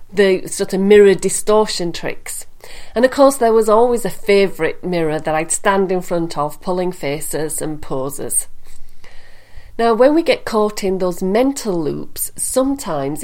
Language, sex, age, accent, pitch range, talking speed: English, female, 40-59, British, 160-205 Hz, 160 wpm